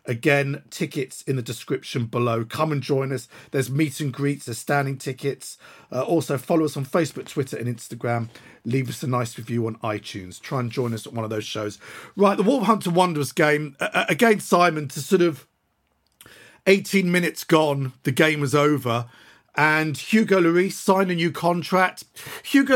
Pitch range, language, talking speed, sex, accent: 135-170 Hz, English, 180 wpm, male, British